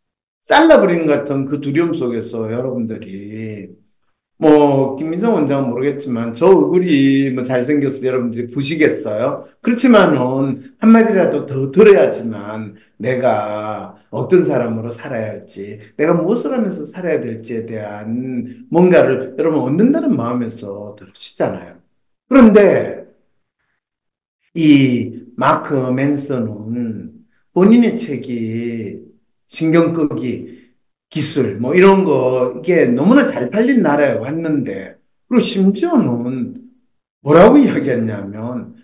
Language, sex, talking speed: English, male, 90 wpm